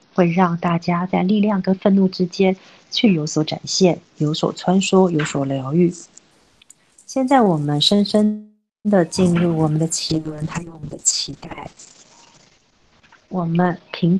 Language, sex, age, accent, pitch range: Chinese, female, 40-59, native, 165-210 Hz